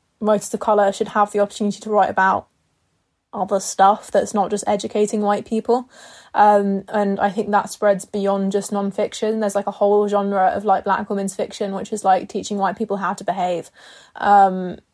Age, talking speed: 20-39, 190 wpm